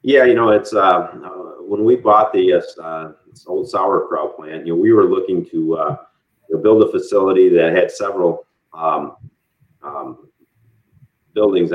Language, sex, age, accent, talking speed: English, male, 40-59, American, 160 wpm